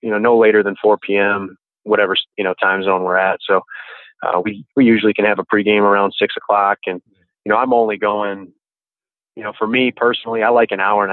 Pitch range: 100-110 Hz